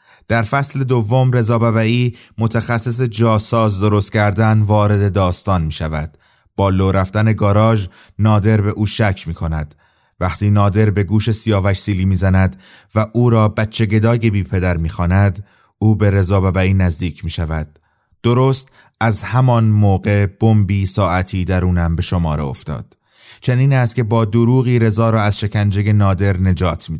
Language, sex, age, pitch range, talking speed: Persian, male, 30-49, 95-110 Hz, 150 wpm